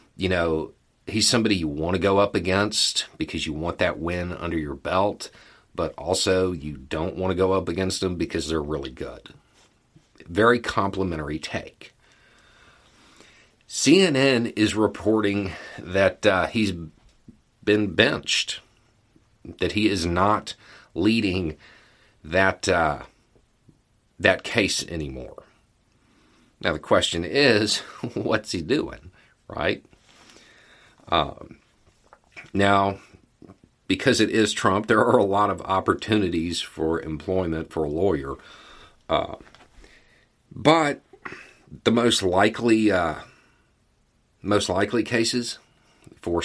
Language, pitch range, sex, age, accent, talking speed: English, 85-110 Hz, male, 50-69, American, 115 wpm